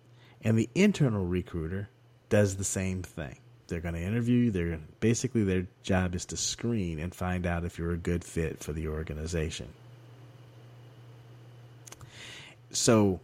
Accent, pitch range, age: American, 95-125 Hz, 30-49